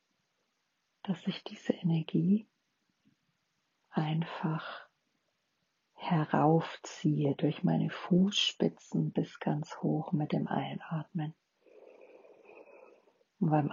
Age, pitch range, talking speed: 40-59, 155-200 Hz, 75 wpm